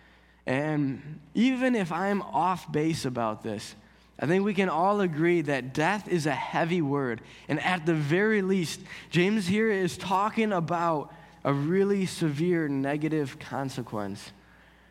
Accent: American